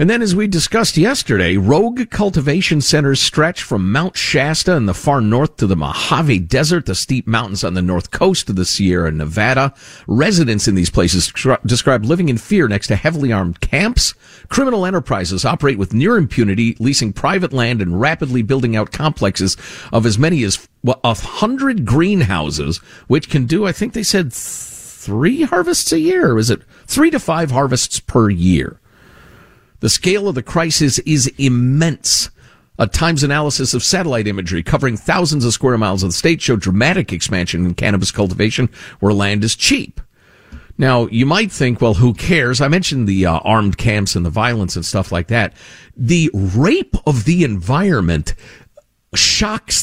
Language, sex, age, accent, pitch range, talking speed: English, male, 50-69, American, 100-160 Hz, 170 wpm